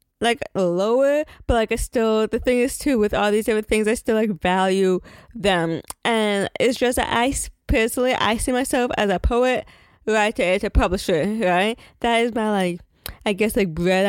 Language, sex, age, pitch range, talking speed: English, female, 20-39, 190-230 Hz, 185 wpm